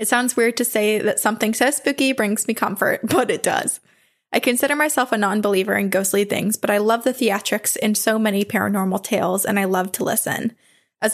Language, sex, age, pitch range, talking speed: English, female, 20-39, 205-240 Hz, 215 wpm